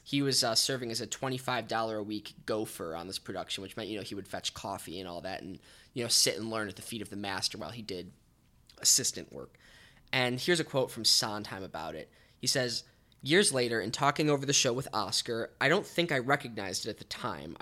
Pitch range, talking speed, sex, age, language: 115-140 Hz, 230 wpm, male, 10-29, English